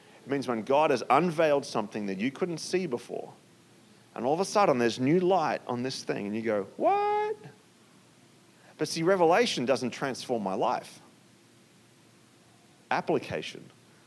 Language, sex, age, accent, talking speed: English, male, 40-59, Australian, 145 wpm